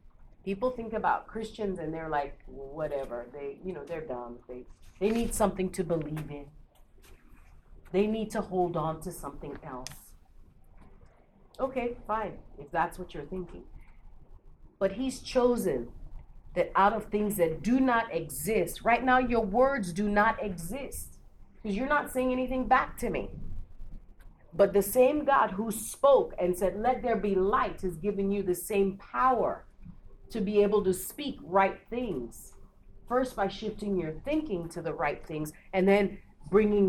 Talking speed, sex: 160 wpm, female